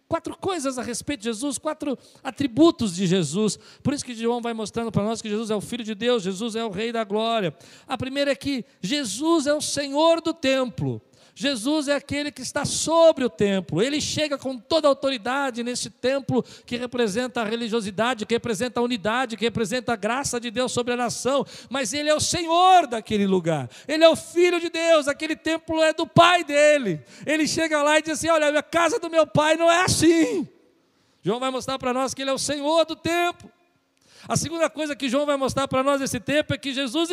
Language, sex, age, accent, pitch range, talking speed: Portuguese, male, 50-69, Brazilian, 240-300 Hz, 215 wpm